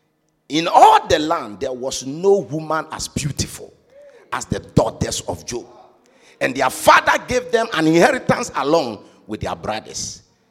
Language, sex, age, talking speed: English, male, 50-69, 150 wpm